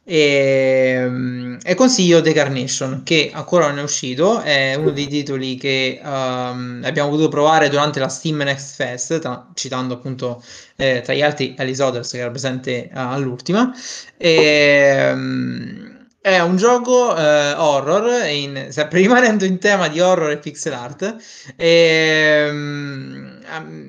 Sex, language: male, Italian